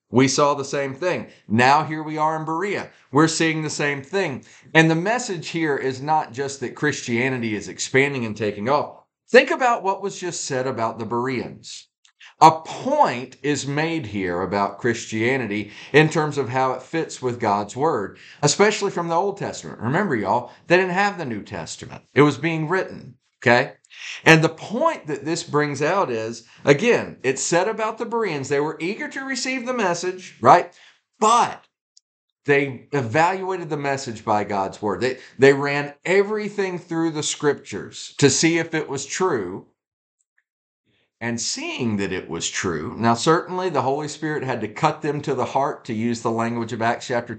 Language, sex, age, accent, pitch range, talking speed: English, male, 40-59, American, 120-170 Hz, 180 wpm